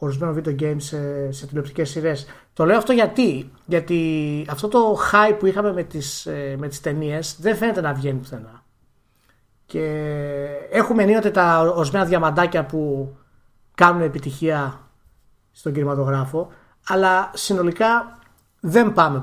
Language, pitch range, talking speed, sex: Greek, 135-185 Hz, 130 wpm, male